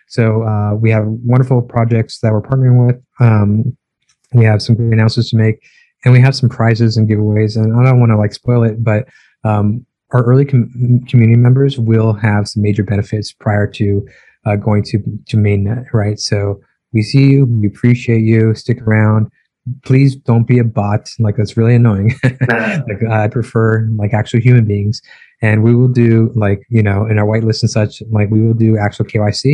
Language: English